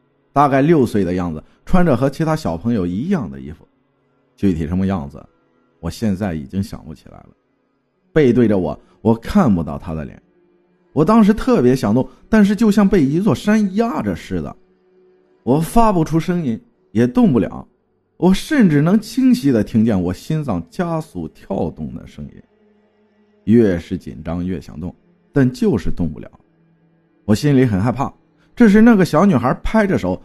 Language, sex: Chinese, male